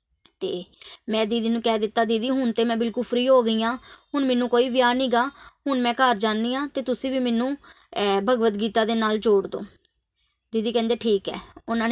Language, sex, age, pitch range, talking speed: Punjabi, female, 20-39, 225-270 Hz, 210 wpm